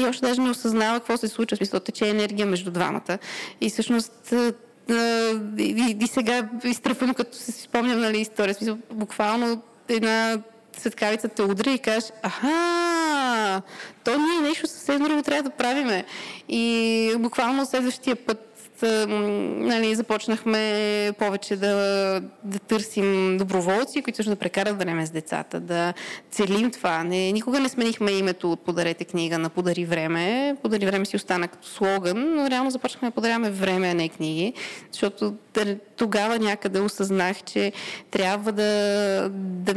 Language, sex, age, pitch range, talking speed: Bulgarian, female, 20-39, 195-235 Hz, 145 wpm